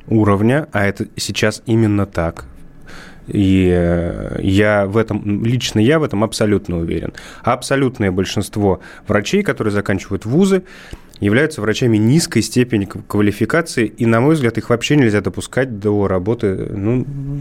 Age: 20-39